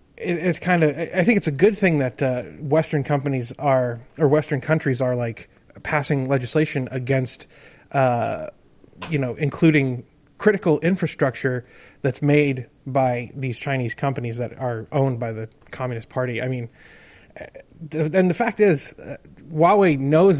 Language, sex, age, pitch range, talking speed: English, male, 20-39, 130-155 Hz, 145 wpm